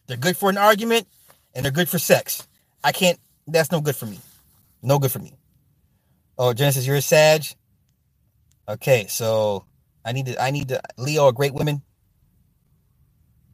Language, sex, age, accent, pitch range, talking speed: English, male, 30-49, American, 125-160 Hz, 175 wpm